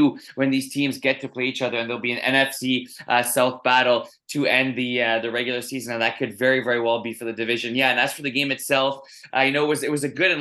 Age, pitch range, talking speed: 20-39, 130-160 Hz, 285 wpm